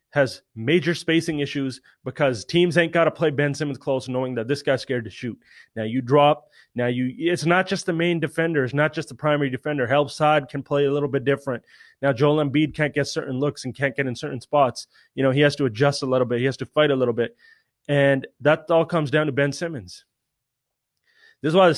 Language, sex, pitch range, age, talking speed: English, male, 130-160 Hz, 20-39, 235 wpm